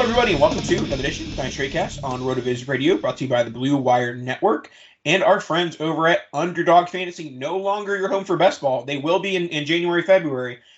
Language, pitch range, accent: English, 135-180 Hz, American